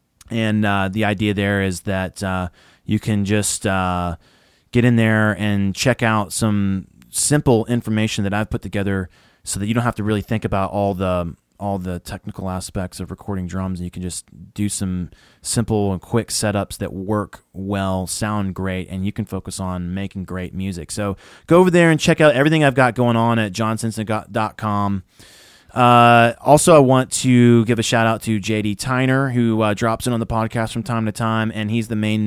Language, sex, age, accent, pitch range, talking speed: English, male, 20-39, American, 95-115 Hz, 200 wpm